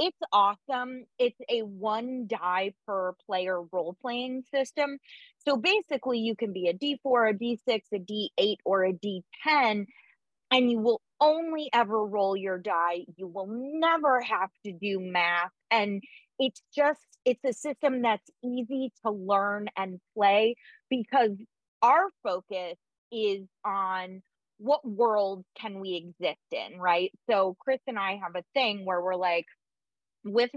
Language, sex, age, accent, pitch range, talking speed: English, female, 30-49, American, 195-255 Hz, 145 wpm